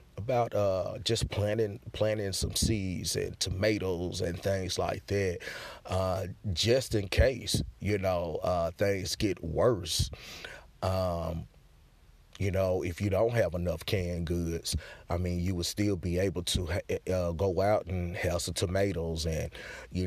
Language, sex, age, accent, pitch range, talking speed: English, male, 30-49, American, 85-100 Hz, 150 wpm